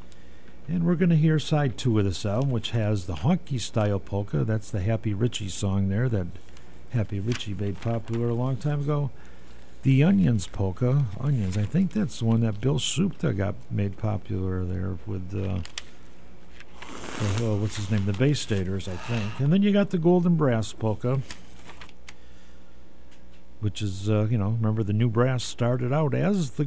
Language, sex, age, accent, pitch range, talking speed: English, male, 50-69, American, 90-135 Hz, 180 wpm